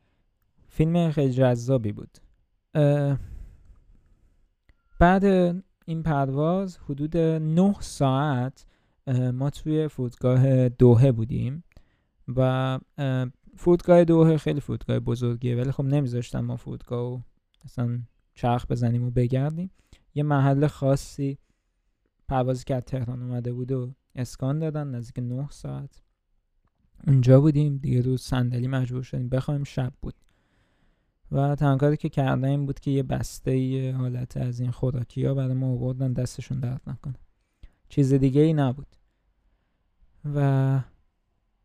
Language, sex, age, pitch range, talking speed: Persian, male, 20-39, 110-145 Hz, 115 wpm